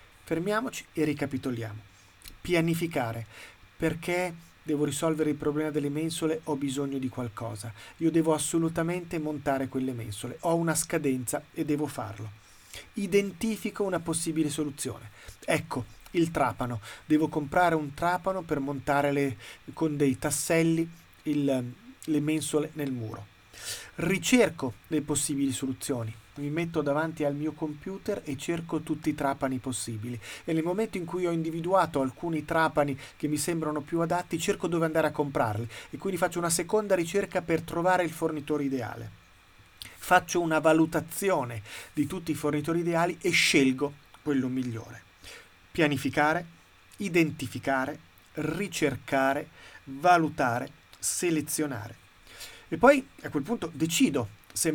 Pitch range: 130-165 Hz